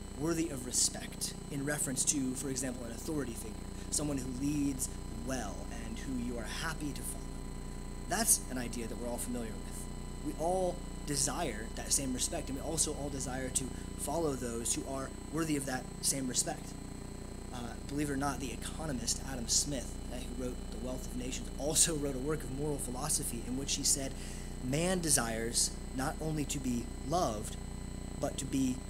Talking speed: 180 wpm